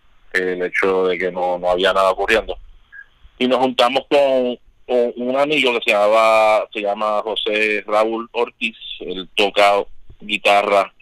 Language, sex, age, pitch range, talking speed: Spanish, male, 30-49, 95-110 Hz, 145 wpm